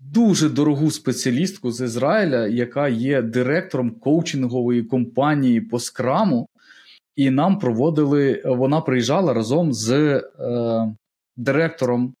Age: 20-39